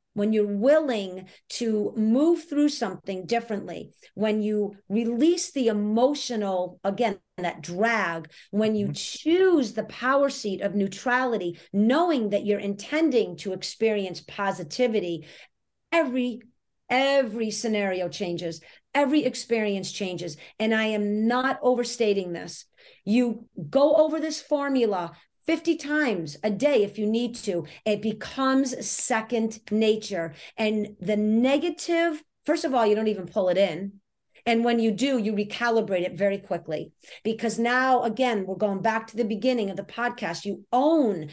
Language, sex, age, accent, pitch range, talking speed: English, female, 50-69, American, 200-250 Hz, 140 wpm